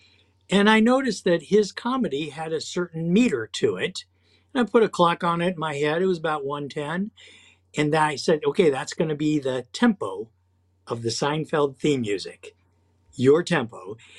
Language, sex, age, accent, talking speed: English, male, 50-69, American, 185 wpm